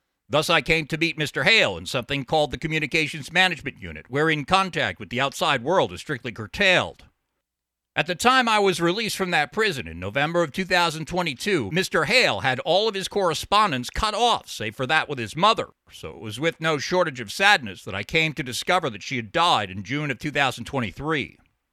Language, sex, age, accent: English, male, 50-69, American